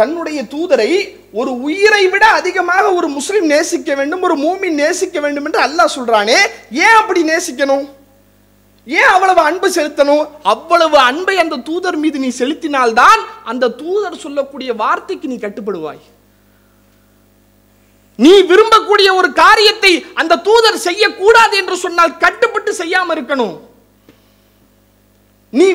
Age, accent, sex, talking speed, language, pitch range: 30-49, Indian, male, 110 wpm, English, 240-375 Hz